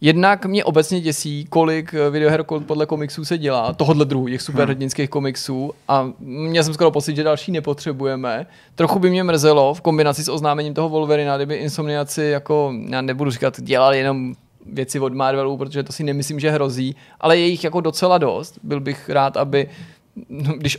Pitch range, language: 135-155 Hz, Czech